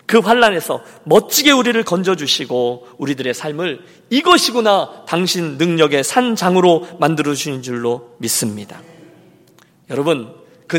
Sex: male